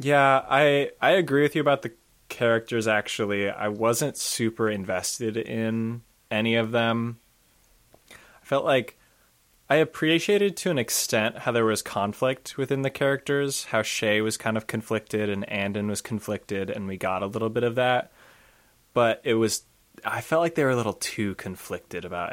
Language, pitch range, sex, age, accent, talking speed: English, 100-130 Hz, male, 20-39, American, 170 wpm